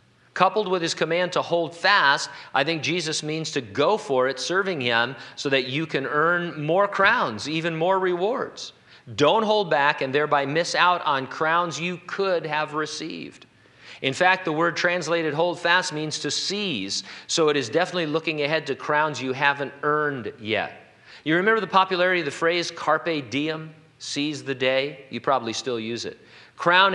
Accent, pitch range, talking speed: American, 120-170 Hz, 180 wpm